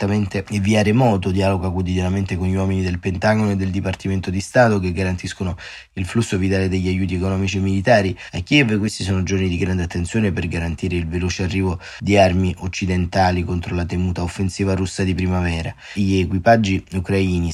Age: 20-39